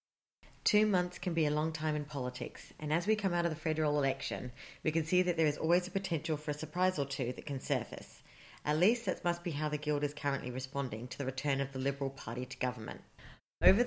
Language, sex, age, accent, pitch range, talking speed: English, female, 40-59, Australian, 140-160 Hz, 240 wpm